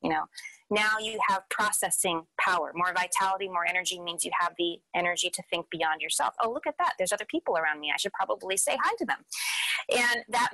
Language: English